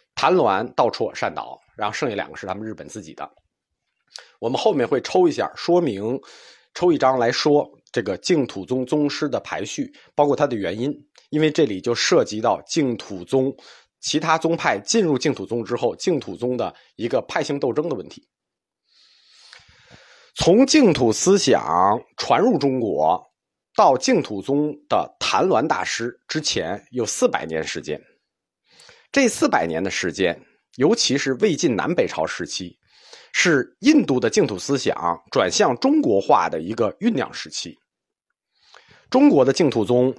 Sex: male